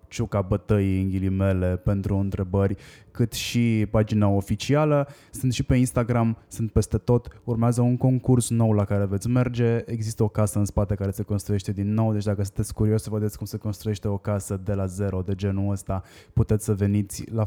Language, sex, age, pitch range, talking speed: Romanian, male, 20-39, 100-125 Hz, 190 wpm